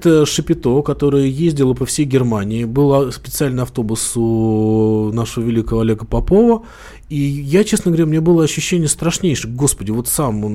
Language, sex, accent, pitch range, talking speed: Russian, male, native, 115-155 Hz, 150 wpm